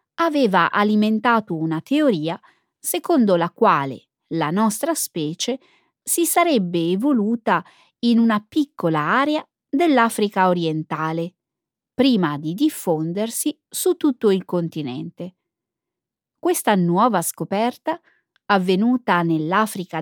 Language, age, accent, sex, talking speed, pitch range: Italian, 20-39, native, female, 95 wpm, 175-275 Hz